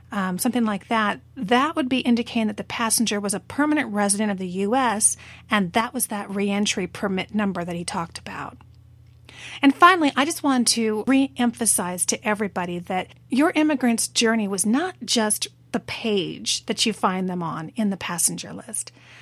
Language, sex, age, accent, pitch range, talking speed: English, female, 40-59, American, 205-260 Hz, 175 wpm